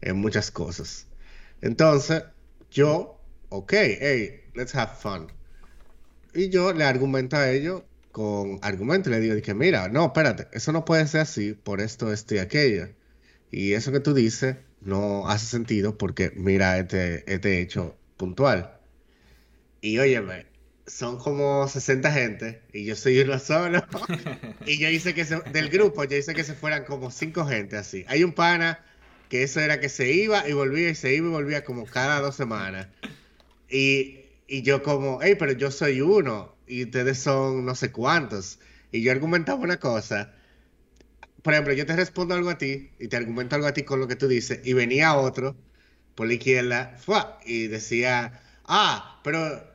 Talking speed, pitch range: 170 wpm, 105-150 Hz